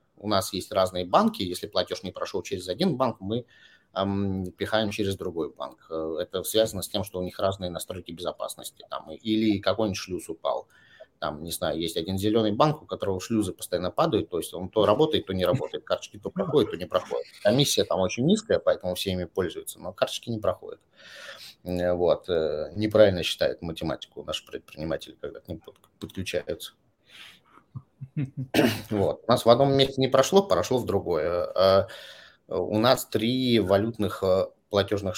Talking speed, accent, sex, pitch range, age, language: 165 wpm, native, male, 95-120 Hz, 30-49, Russian